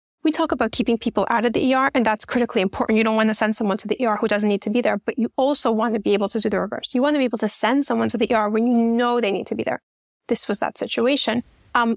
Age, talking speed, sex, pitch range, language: 10-29, 315 wpm, female, 225-255 Hz, English